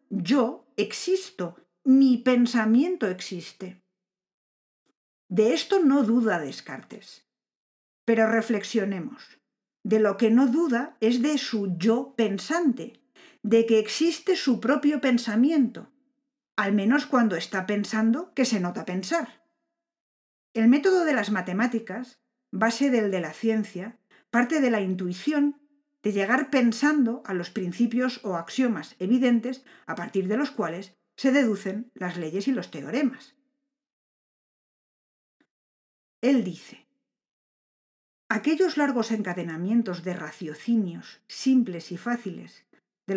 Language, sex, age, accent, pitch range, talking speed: Spanish, female, 40-59, Spanish, 195-265 Hz, 115 wpm